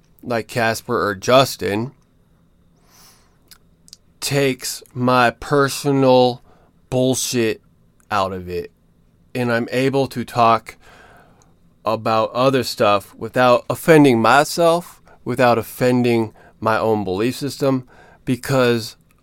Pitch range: 105-130 Hz